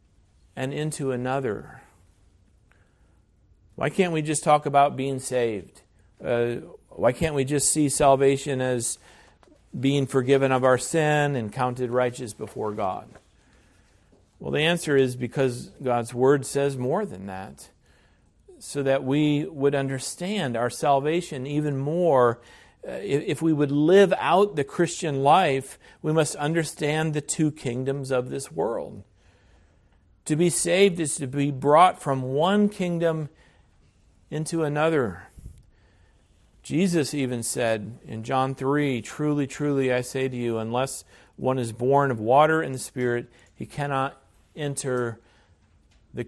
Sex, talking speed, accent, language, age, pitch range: male, 135 wpm, American, English, 50-69, 115-155 Hz